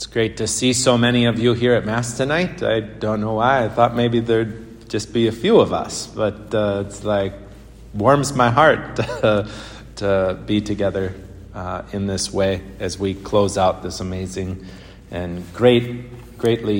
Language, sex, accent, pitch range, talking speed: English, male, American, 100-120 Hz, 175 wpm